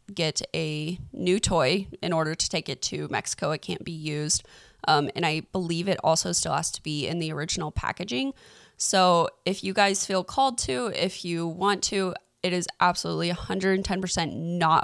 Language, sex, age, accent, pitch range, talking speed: English, female, 20-39, American, 170-205 Hz, 180 wpm